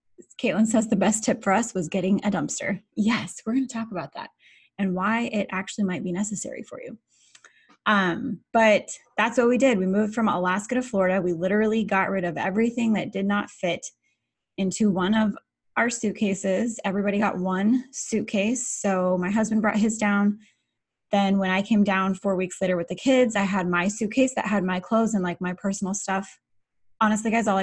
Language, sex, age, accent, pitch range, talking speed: English, female, 20-39, American, 185-225 Hz, 200 wpm